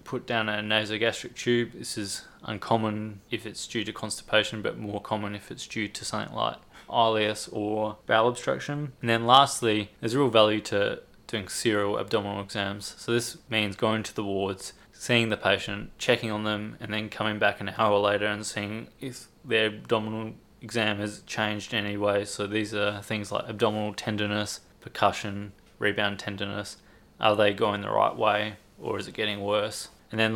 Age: 20-39